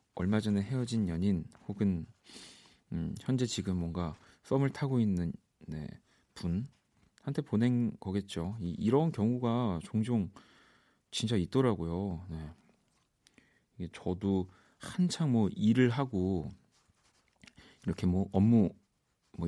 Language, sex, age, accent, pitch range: Korean, male, 40-59, native, 90-120 Hz